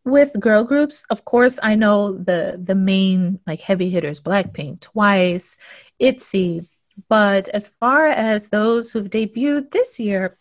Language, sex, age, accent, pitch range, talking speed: English, female, 30-49, American, 190-245 Hz, 145 wpm